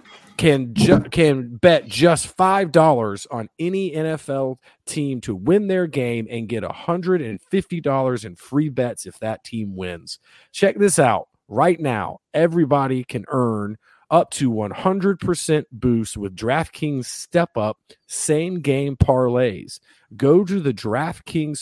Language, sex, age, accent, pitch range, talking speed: English, male, 40-59, American, 115-165 Hz, 130 wpm